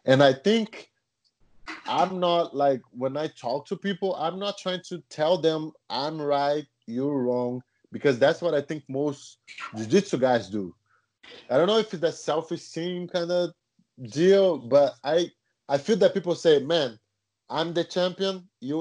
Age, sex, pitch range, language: 20-39, male, 130-185 Hz, English